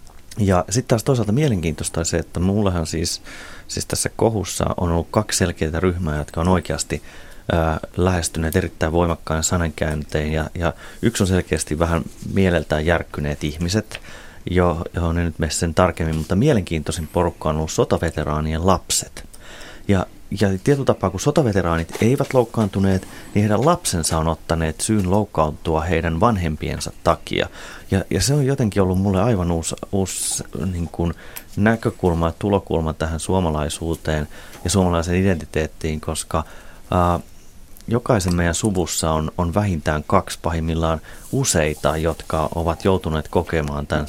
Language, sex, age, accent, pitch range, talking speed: Finnish, male, 30-49, native, 80-100 Hz, 130 wpm